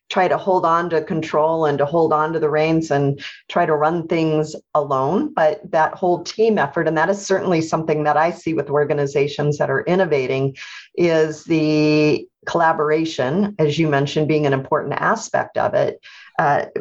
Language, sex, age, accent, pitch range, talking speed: English, female, 40-59, American, 145-185 Hz, 180 wpm